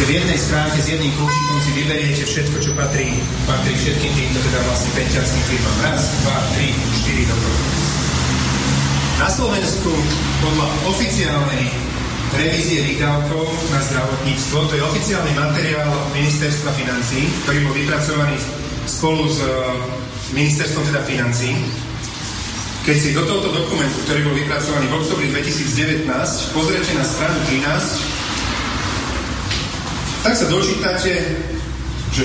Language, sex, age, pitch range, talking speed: Slovak, male, 30-49, 130-155 Hz, 120 wpm